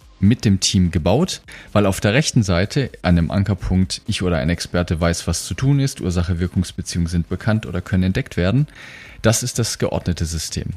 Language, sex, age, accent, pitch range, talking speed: German, male, 40-59, German, 85-105 Hz, 185 wpm